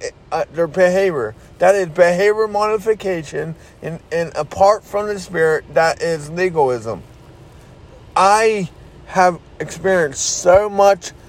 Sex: male